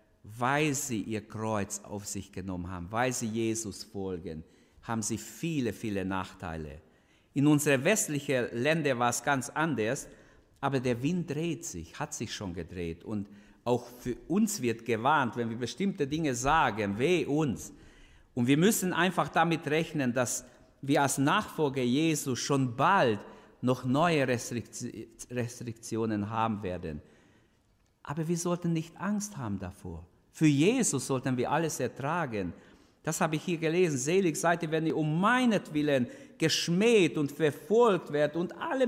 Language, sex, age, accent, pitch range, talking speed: German, male, 60-79, German, 110-165 Hz, 150 wpm